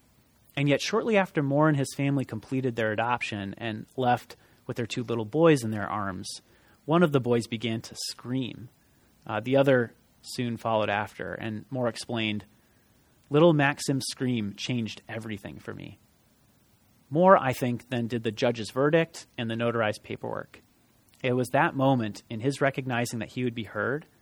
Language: English